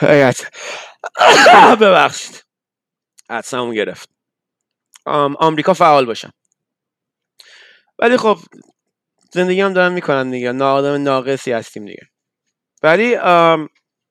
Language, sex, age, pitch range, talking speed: Persian, male, 30-49, 125-155 Hz, 85 wpm